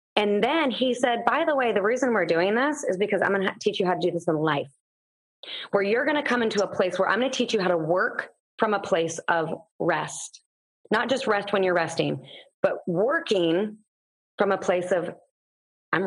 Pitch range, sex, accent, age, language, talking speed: 185-225 Hz, female, American, 30-49, English, 225 wpm